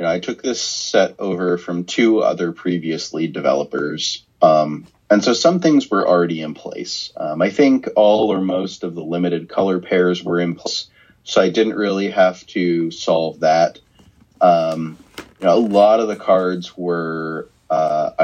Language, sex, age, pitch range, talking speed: English, male, 30-49, 85-105 Hz, 175 wpm